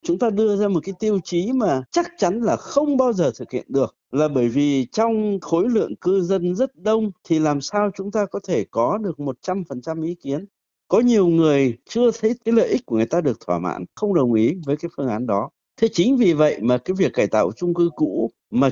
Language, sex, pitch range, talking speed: Vietnamese, male, 140-190 Hz, 240 wpm